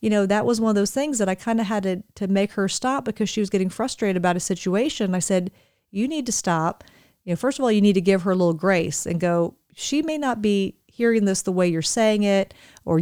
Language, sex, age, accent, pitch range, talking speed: English, female, 40-59, American, 180-220 Hz, 270 wpm